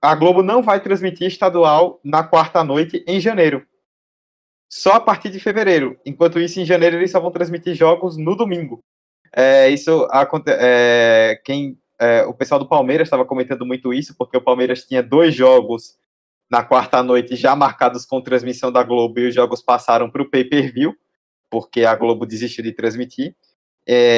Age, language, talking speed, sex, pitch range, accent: 20-39, Portuguese, 160 wpm, male, 125-175 Hz, Brazilian